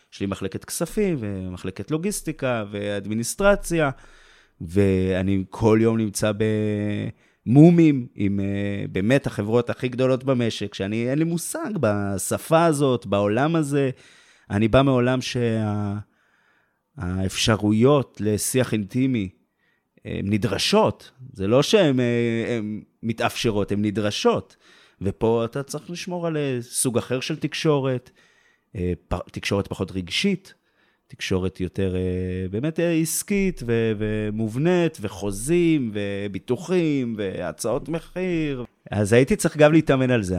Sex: male